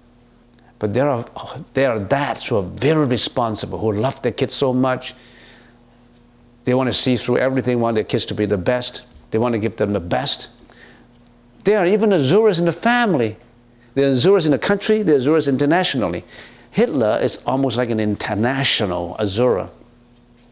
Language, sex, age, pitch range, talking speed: English, male, 50-69, 115-150 Hz, 180 wpm